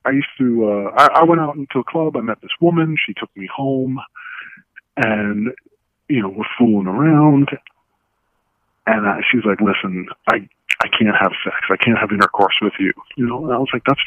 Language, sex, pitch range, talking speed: English, male, 105-135 Hz, 205 wpm